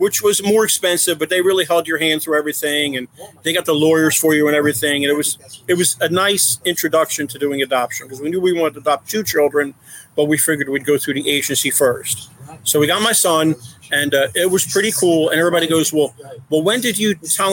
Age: 50-69